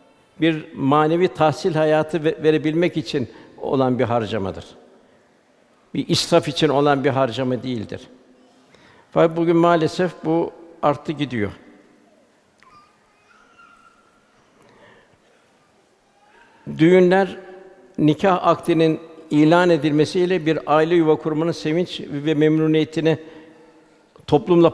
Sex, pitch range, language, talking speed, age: male, 145-170 Hz, Turkish, 85 wpm, 60-79